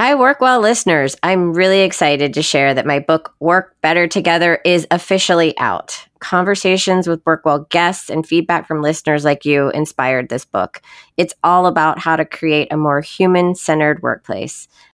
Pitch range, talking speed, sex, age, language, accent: 150-190 Hz, 160 wpm, female, 30-49, English, American